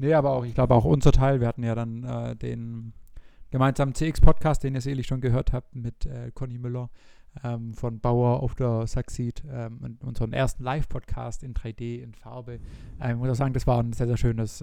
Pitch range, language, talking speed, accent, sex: 115-135 Hz, German, 215 wpm, German, male